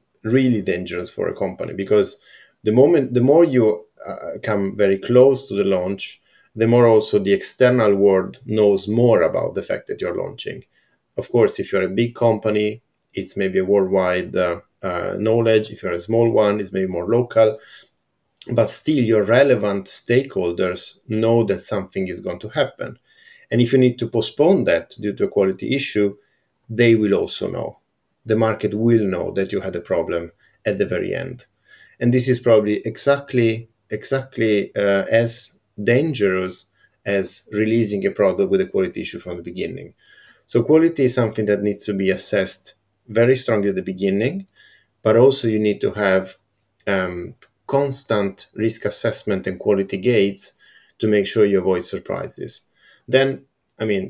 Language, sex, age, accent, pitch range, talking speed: English, male, 50-69, Italian, 100-120 Hz, 170 wpm